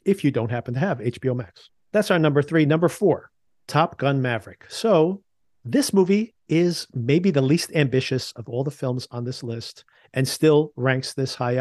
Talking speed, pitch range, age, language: 190 wpm, 120-160 Hz, 40-59, English